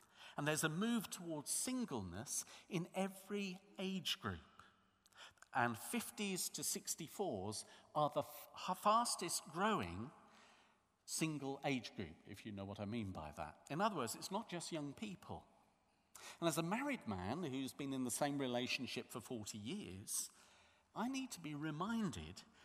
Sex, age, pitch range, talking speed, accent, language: male, 50-69, 125-185 Hz, 150 wpm, British, English